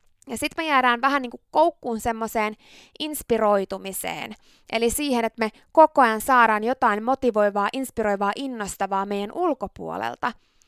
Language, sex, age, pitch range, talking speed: Finnish, female, 20-39, 215-285 Hz, 130 wpm